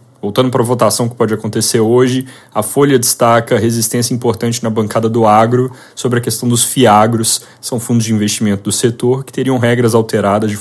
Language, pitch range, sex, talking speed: Portuguese, 110-125 Hz, male, 190 wpm